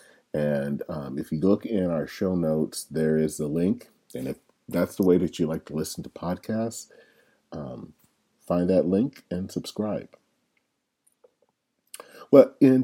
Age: 40-59